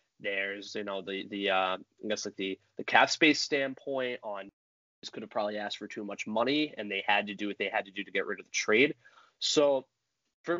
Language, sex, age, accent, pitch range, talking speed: English, male, 20-39, American, 105-145 Hz, 240 wpm